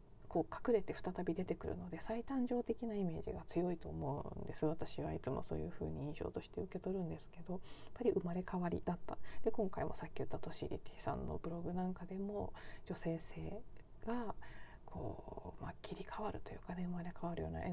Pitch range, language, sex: 165-205 Hz, Japanese, female